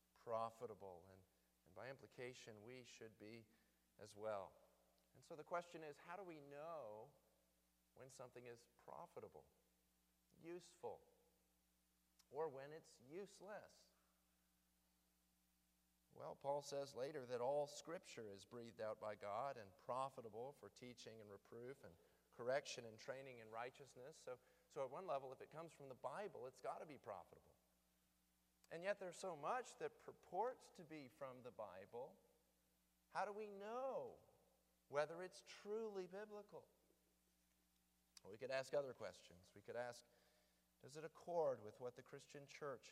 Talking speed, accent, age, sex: 145 wpm, American, 40-59, male